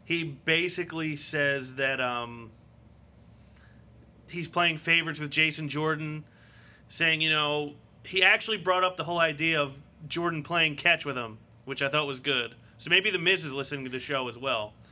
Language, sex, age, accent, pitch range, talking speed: English, male, 30-49, American, 135-160 Hz, 175 wpm